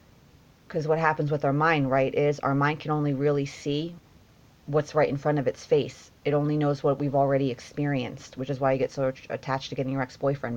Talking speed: 220 wpm